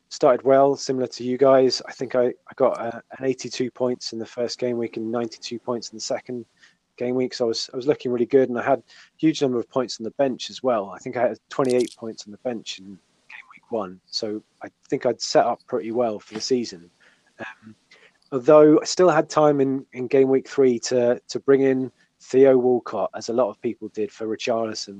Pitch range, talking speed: 110-130 Hz, 235 wpm